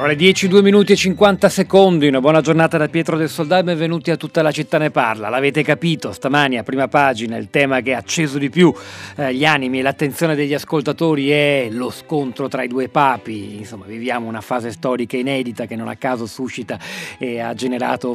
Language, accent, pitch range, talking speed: Italian, native, 130-160 Hz, 205 wpm